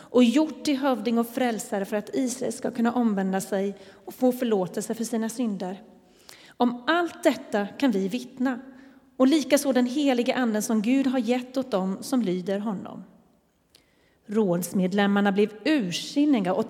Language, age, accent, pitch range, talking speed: Swedish, 30-49, native, 210-265 Hz, 155 wpm